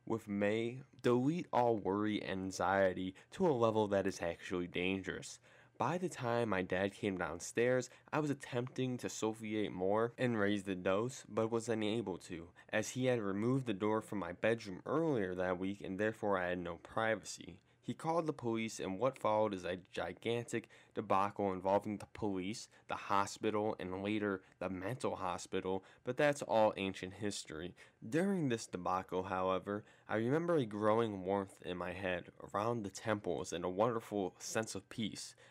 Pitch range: 95-115 Hz